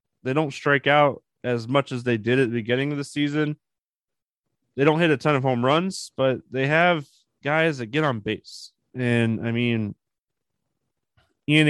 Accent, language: American, English